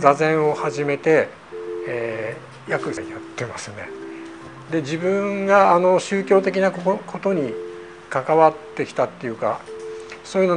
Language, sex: Japanese, male